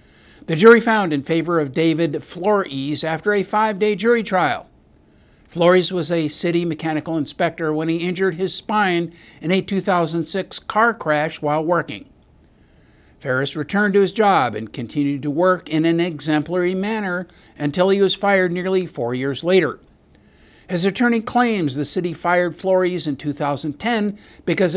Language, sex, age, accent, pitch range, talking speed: English, male, 50-69, American, 145-195 Hz, 150 wpm